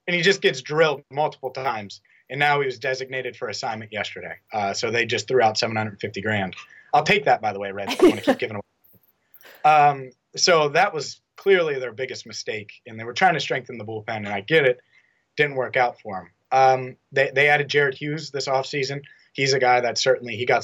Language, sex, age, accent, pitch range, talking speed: English, male, 30-49, American, 115-145 Hz, 235 wpm